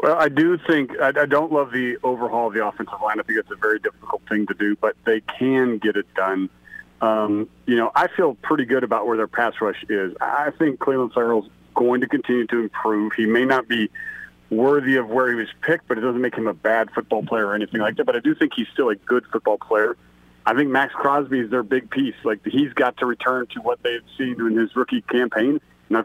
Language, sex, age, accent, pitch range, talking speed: English, male, 40-59, American, 110-140 Hz, 245 wpm